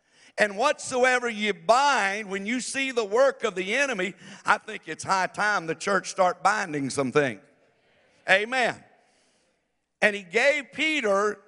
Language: English